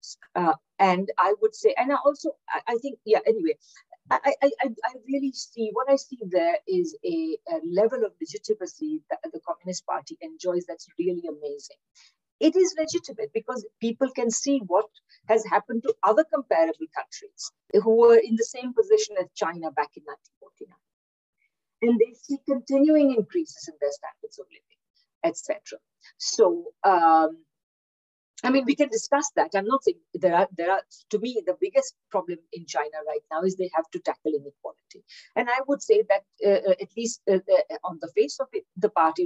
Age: 50-69